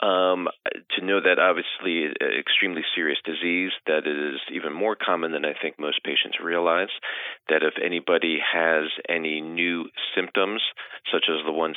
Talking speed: 155 wpm